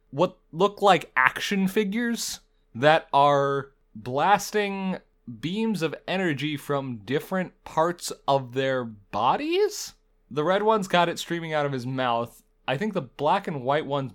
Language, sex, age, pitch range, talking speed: English, male, 20-39, 130-180 Hz, 145 wpm